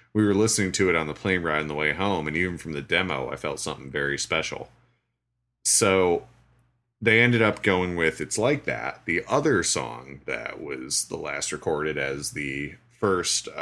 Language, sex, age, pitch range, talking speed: English, male, 30-49, 80-115 Hz, 190 wpm